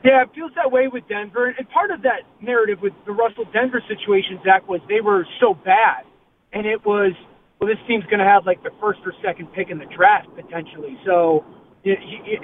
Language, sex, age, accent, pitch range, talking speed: English, male, 30-49, American, 185-240 Hz, 205 wpm